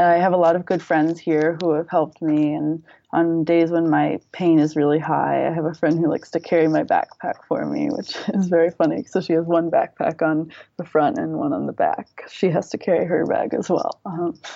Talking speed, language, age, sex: 245 wpm, English, 20-39, female